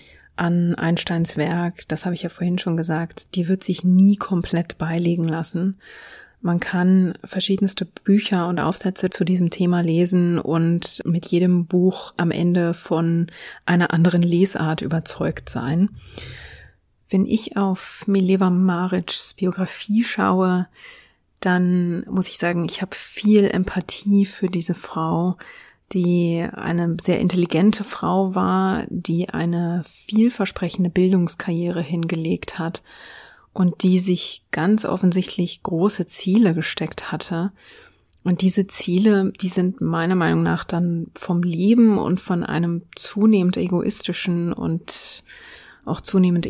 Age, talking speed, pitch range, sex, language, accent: 30-49, 125 wpm, 170-190 Hz, female, German, German